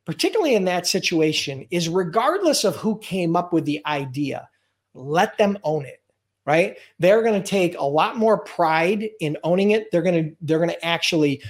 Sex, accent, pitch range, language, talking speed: male, American, 150-210 Hz, English, 190 wpm